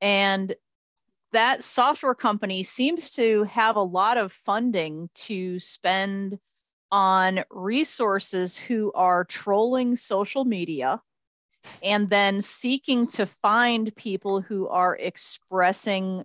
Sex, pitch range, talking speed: female, 195-250 Hz, 105 wpm